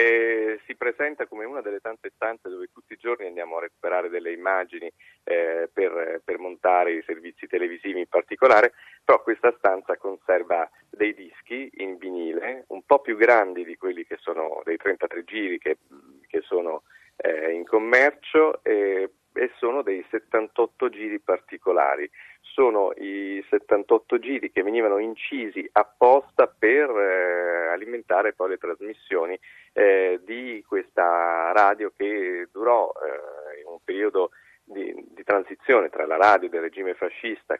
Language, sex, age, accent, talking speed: Italian, male, 40-59, native, 140 wpm